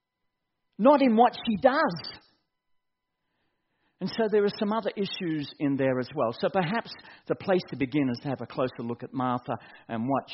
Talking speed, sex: 185 wpm, male